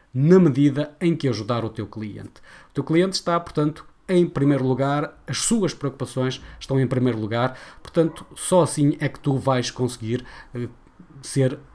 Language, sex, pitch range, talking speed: Portuguese, male, 125-165 Hz, 165 wpm